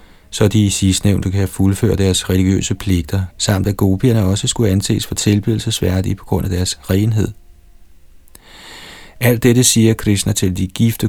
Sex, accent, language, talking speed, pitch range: male, native, Danish, 155 wpm, 95-110 Hz